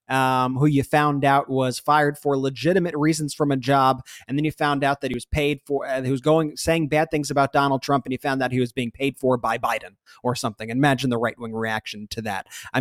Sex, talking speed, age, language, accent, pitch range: male, 255 wpm, 30-49, English, American, 120-150 Hz